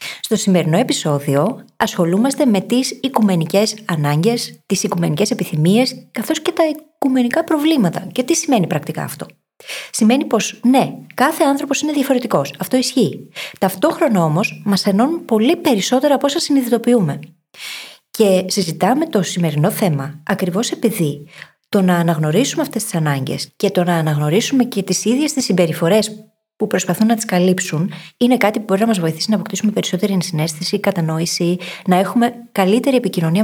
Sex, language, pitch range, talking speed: female, Greek, 175-250 Hz, 145 wpm